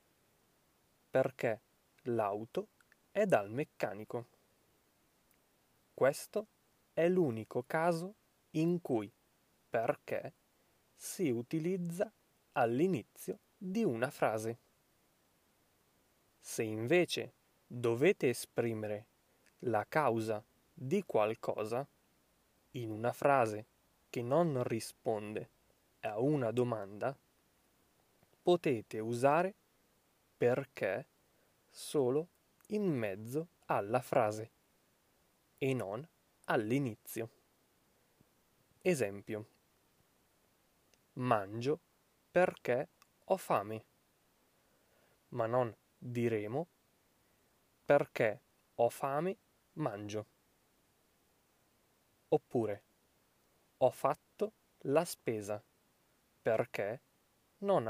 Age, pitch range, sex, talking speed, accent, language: 20-39, 110-160 Hz, male, 65 wpm, native, Italian